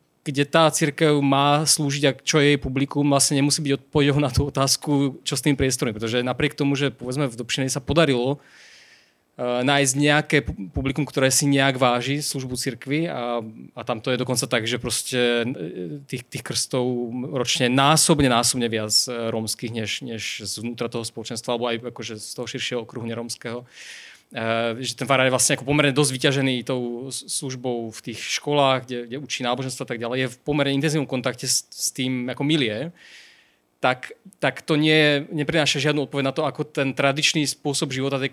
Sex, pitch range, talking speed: male, 120-140 Hz, 180 wpm